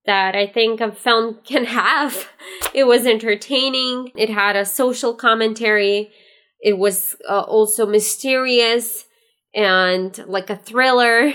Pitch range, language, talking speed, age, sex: 205-240 Hz, English, 125 wpm, 20-39, female